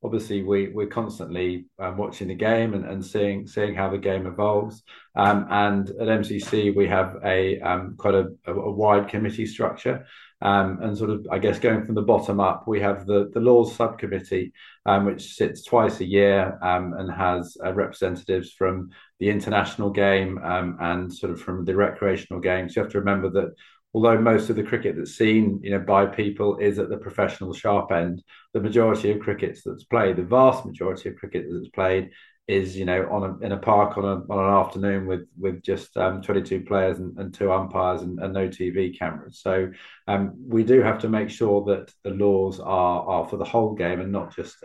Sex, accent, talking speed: male, British, 200 wpm